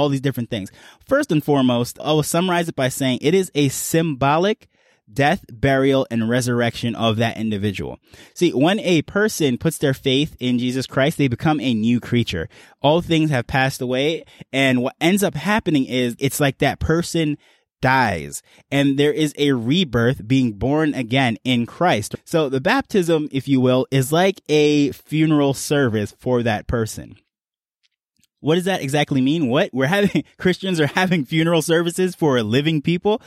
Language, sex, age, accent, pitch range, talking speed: English, male, 20-39, American, 125-160 Hz, 170 wpm